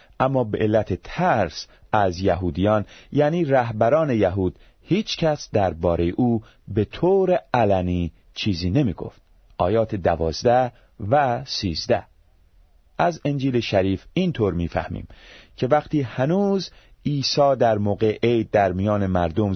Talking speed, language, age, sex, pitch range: 125 wpm, Persian, 40-59, male, 90-130 Hz